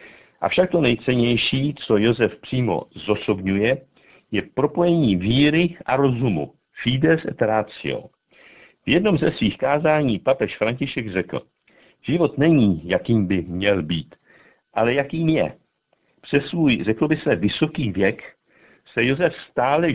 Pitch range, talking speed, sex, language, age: 110-145 Hz, 125 wpm, male, Czech, 60-79